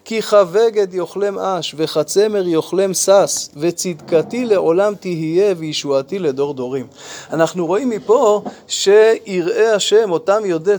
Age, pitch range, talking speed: 20-39, 175-225 Hz, 110 wpm